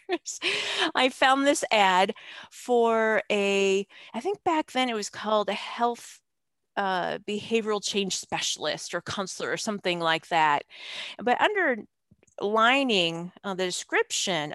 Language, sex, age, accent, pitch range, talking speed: English, female, 40-59, American, 175-225 Hz, 125 wpm